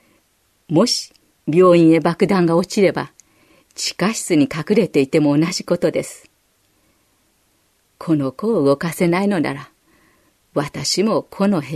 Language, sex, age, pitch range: Japanese, female, 50-69, 160-225 Hz